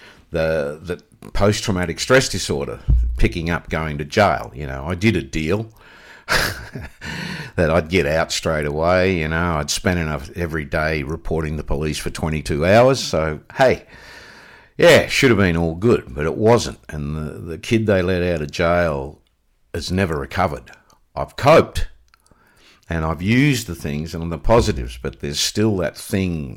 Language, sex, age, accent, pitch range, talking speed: English, male, 50-69, Australian, 80-105 Hz, 165 wpm